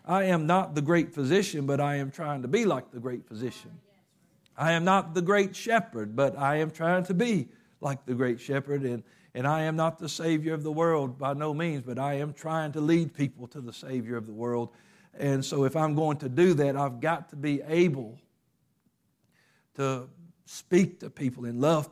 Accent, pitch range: American, 135-170 Hz